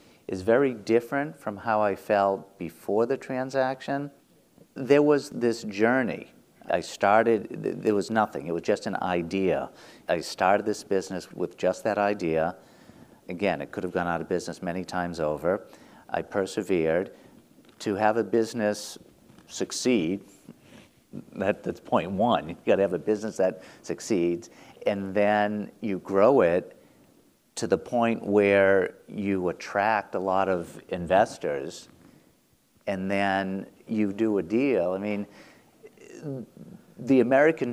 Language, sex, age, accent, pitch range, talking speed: English, male, 50-69, American, 95-115 Hz, 140 wpm